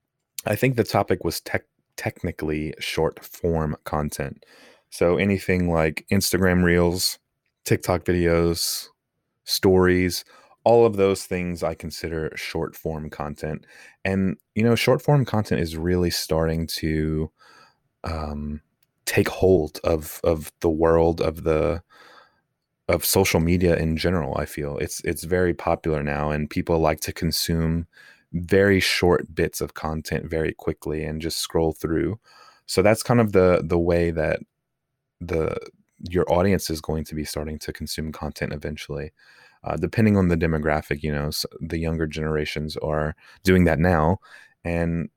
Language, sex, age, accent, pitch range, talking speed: English, male, 20-39, American, 75-90 Hz, 140 wpm